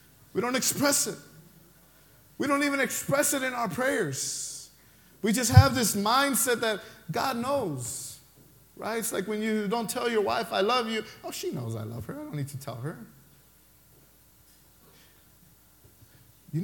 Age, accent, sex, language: 30-49, American, male, English